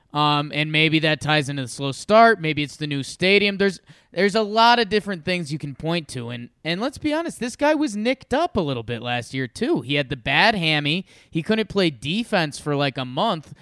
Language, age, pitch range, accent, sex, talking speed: English, 20-39, 145-205 Hz, American, male, 240 wpm